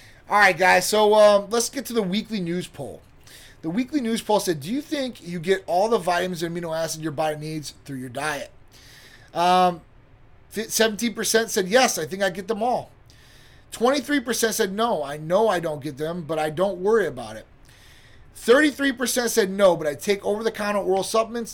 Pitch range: 155-225 Hz